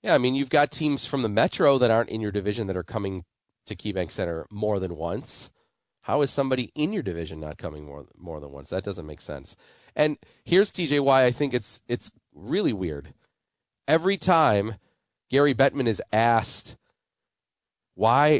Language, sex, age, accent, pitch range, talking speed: English, male, 30-49, American, 100-135 Hz, 185 wpm